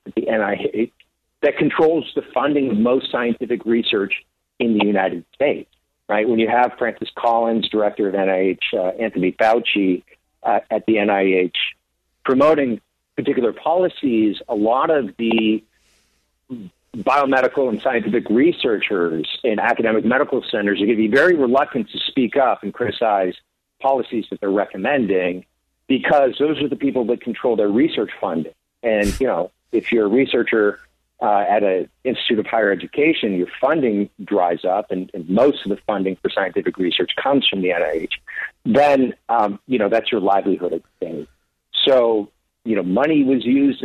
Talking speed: 155 wpm